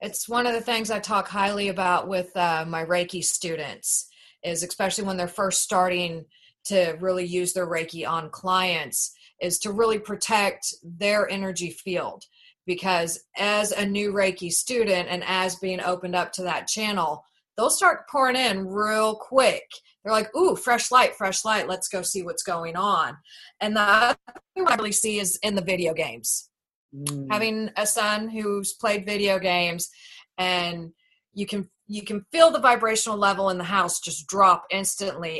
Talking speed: 170 wpm